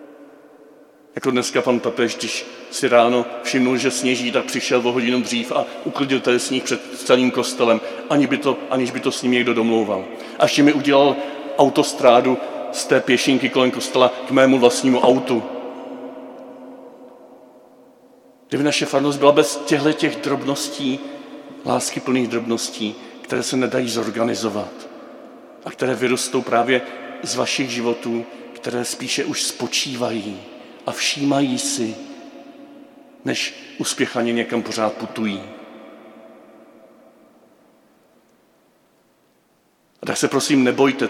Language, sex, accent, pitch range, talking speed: Czech, male, native, 120-145 Hz, 125 wpm